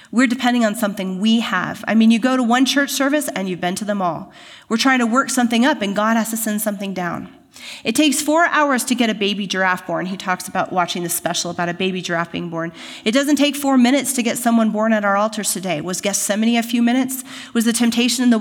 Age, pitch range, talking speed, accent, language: 30-49, 185-240 Hz, 255 wpm, American, English